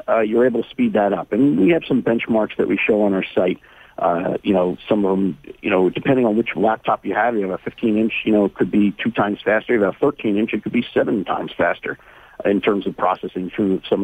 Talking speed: 265 wpm